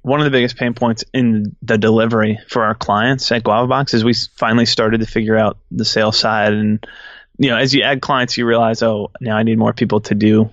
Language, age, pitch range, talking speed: English, 20-39, 110-120 Hz, 240 wpm